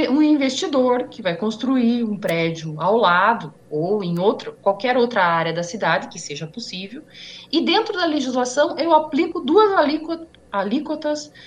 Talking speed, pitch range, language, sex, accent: 140 wpm, 210-300 Hz, Portuguese, female, Brazilian